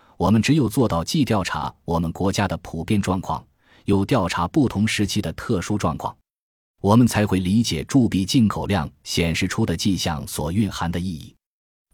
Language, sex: Chinese, male